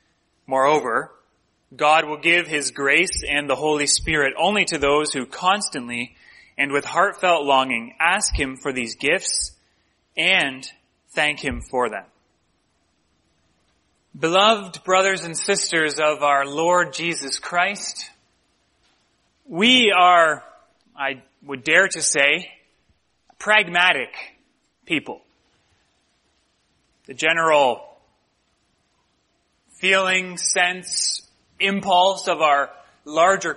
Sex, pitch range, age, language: male, 140-190 Hz, 30-49, English